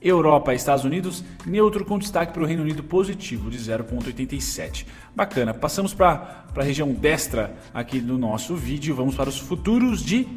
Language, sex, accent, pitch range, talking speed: Portuguese, male, Brazilian, 130-175 Hz, 160 wpm